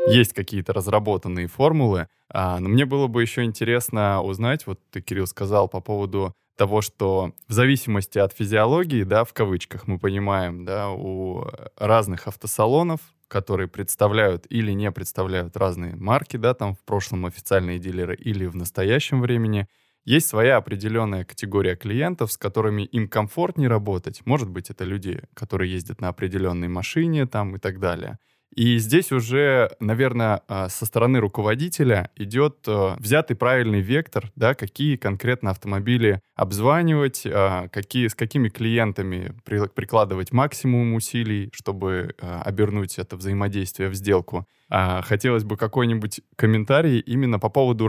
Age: 20-39